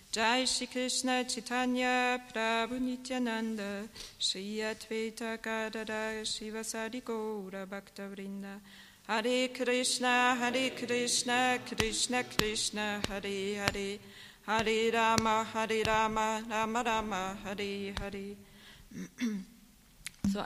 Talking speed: 70 wpm